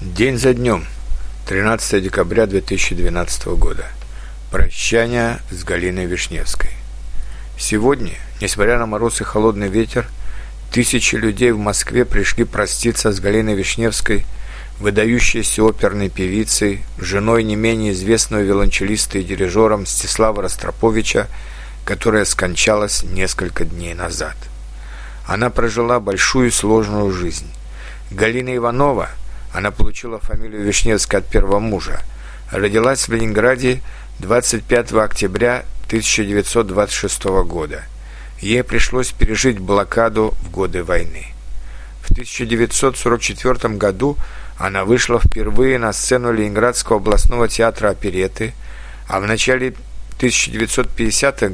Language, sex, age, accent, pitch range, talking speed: Russian, male, 50-69, native, 90-115 Hz, 100 wpm